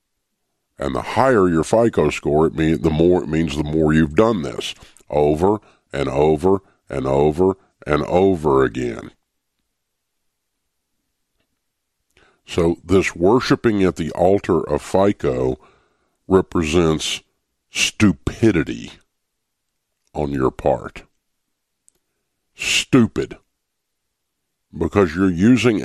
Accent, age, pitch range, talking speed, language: American, 50-69, 85-115 Hz, 95 wpm, English